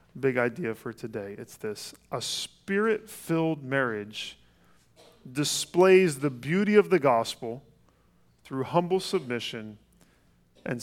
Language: English